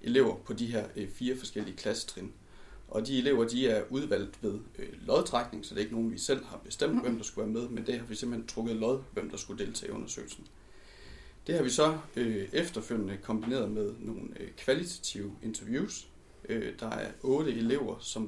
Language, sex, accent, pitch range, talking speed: Danish, male, native, 110-135 Hz, 185 wpm